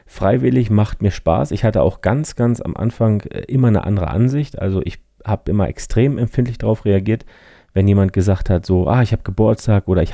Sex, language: male, German